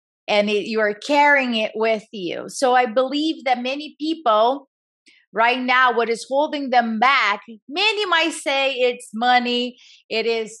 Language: English